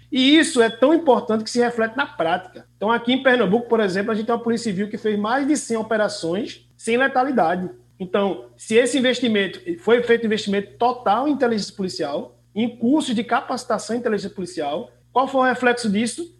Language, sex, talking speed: Portuguese, male, 200 wpm